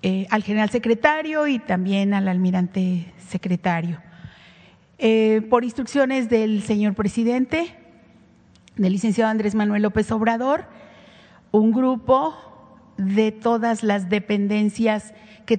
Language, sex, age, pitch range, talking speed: Spanish, female, 40-59, 200-245 Hz, 110 wpm